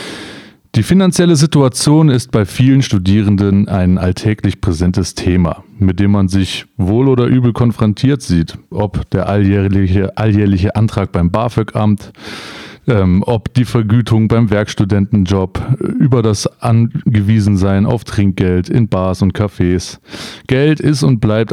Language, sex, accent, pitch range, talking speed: English, male, German, 100-125 Hz, 130 wpm